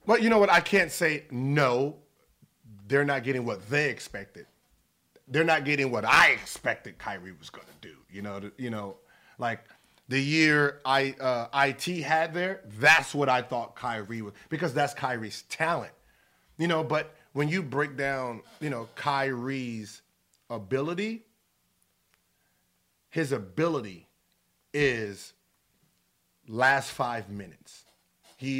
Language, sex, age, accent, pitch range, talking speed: English, male, 30-49, American, 110-145 Hz, 135 wpm